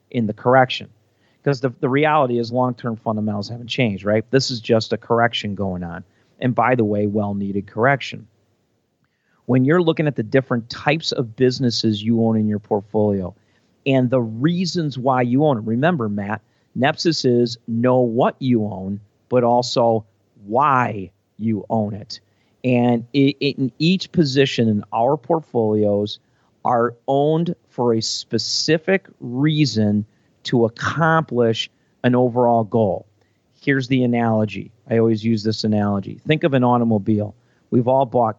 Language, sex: English, male